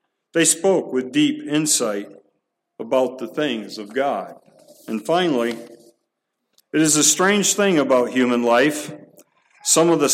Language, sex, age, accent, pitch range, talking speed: English, male, 50-69, American, 130-165 Hz, 135 wpm